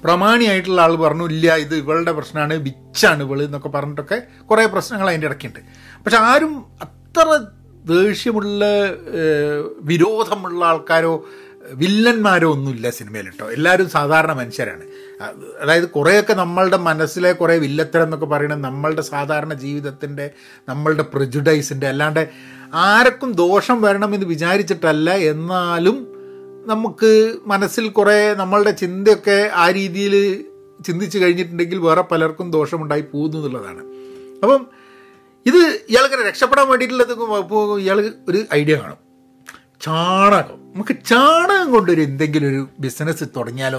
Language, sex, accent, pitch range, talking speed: Malayalam, male, native, 145-205 Hz, 105 wpm